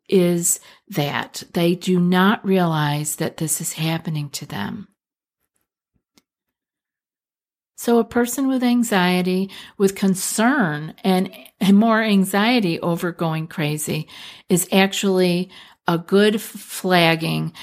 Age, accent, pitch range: 50-69, American, 170-210 Hz